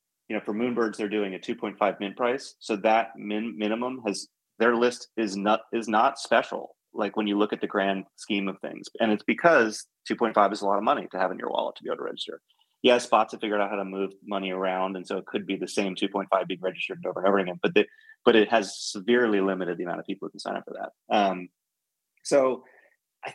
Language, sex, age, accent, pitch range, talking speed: English, male, 30-49, American, 100-125 Hz, 240 wpm